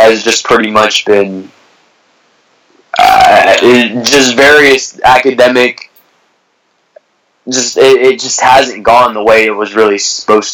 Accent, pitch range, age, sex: American, 110-130 Hz, 20-39, male